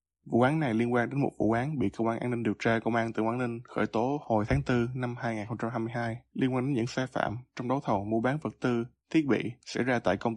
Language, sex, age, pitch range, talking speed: Vietnamese, male, 20-39, 110-130 Hz, 270 wpm